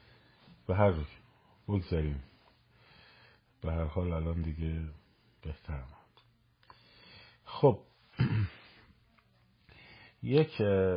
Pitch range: 85-115 Hz